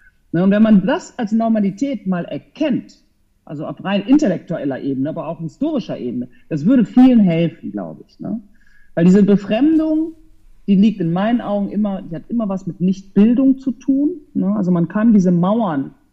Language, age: German, 50-69